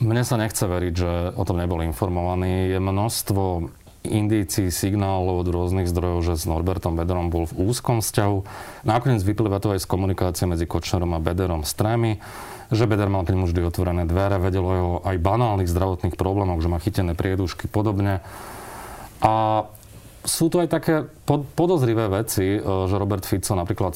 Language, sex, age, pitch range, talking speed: Slovak, male, 30-49, 90-115 Hz, 160 wpm